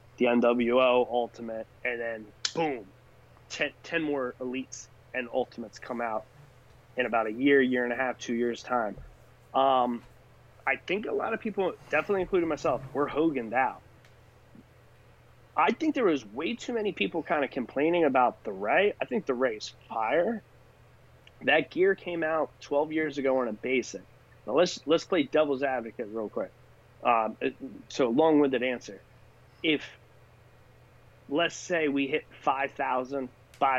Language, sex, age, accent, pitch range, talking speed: English, male, 30-49, American, 120-140 Hz, 155 wpm